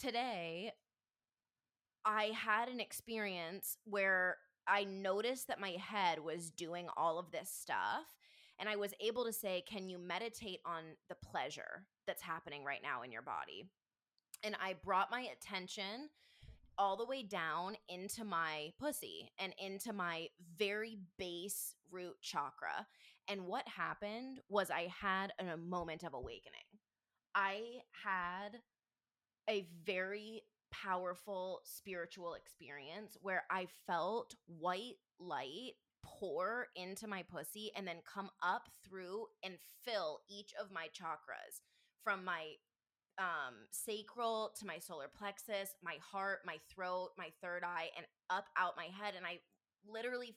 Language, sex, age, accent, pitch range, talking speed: English, female, 20-39, American, 180-220 Hz, 135 wpm